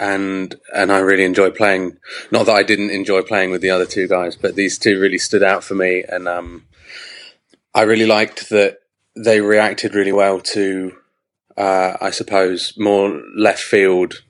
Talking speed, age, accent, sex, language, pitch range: 175 wpm, 20-39, British, male, English, 95-105 Hz